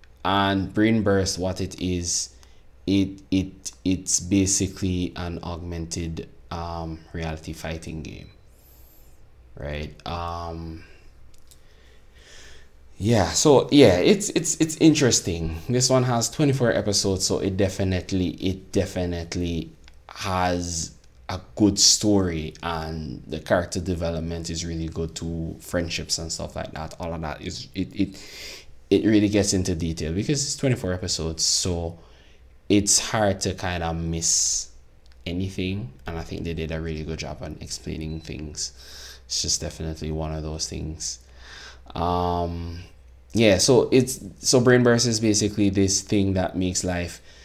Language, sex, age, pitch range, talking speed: English, male, 20-39, 80-95 Hz, 135 wpm